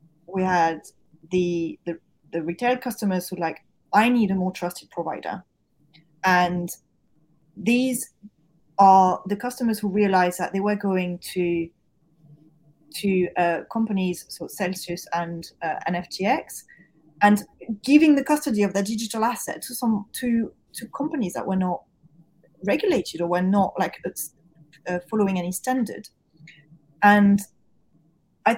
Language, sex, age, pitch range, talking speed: English, female, 30-49, 170-210 Hz, 135 wpm